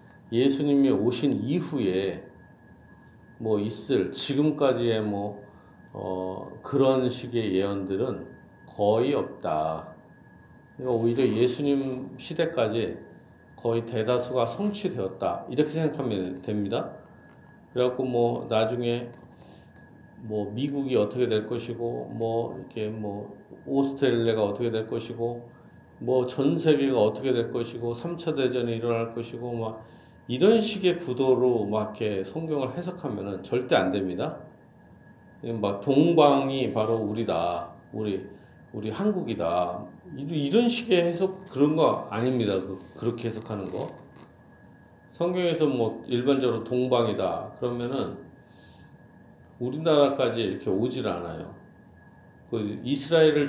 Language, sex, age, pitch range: Korean, male, 40-59, 105-135 Hz